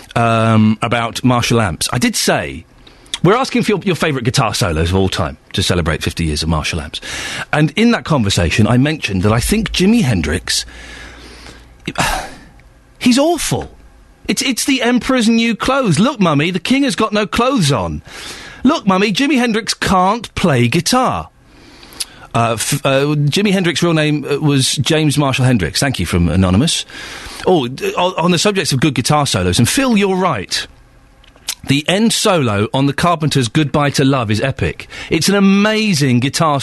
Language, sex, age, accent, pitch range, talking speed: English, male, 40-59, British, 120-195 Hz, 170 wpm